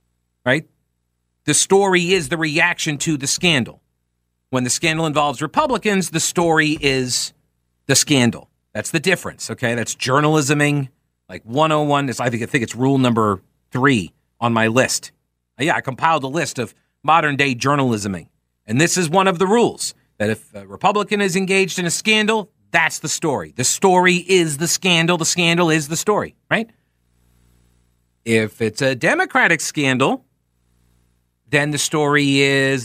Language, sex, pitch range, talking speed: English, male, 120-200 Hz, 155 wpm